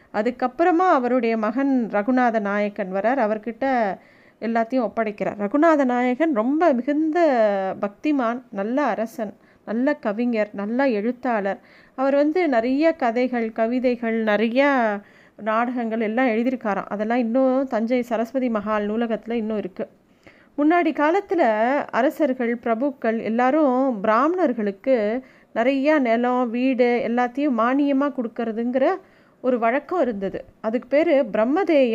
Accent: native